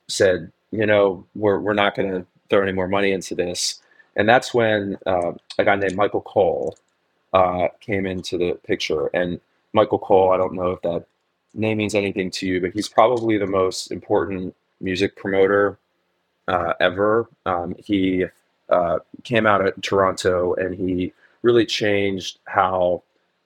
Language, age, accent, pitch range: English, 30-49, American, 90-105 Hz